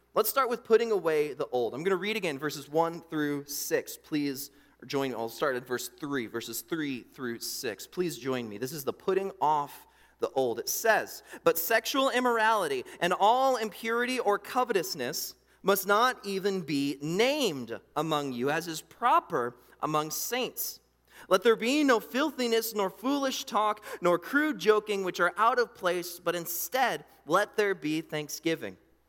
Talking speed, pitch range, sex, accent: 170 wpm, 150-245 Hz, male, American